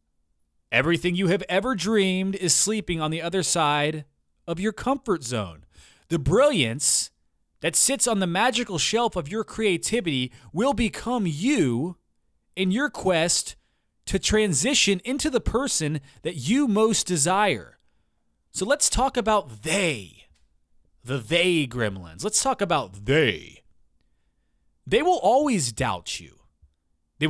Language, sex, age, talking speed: English, male, 30-49, 130 wpm